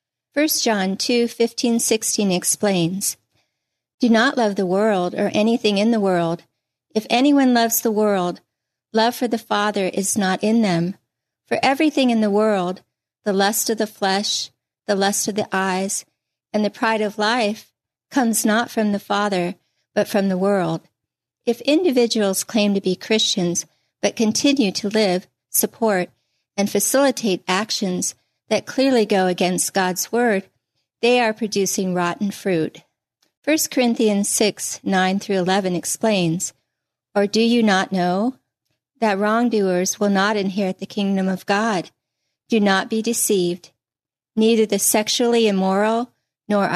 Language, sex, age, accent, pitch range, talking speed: English, female, 50-69, American, 185-225 Hz, 145 wpm